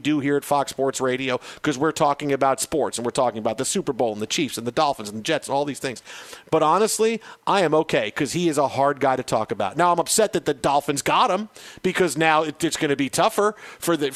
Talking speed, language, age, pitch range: 265 wpm, English, 40-59, 145-180 Hz